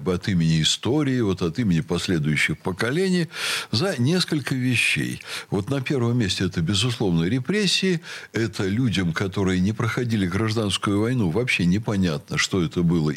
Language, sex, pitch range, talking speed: Russian, male, 95-140 Hz, 135 wpm